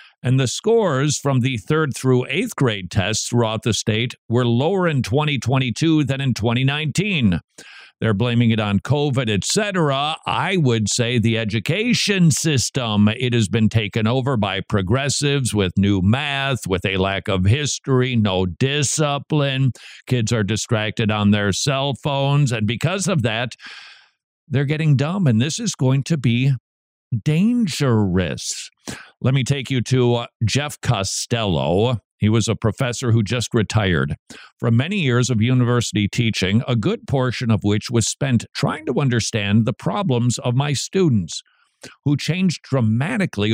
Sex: male